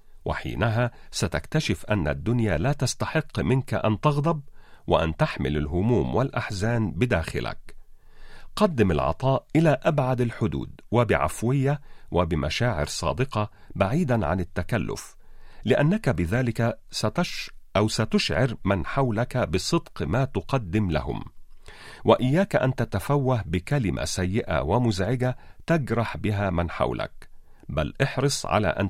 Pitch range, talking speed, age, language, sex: 95-135 Hz, 105 wpm, 40-59, Arabic, male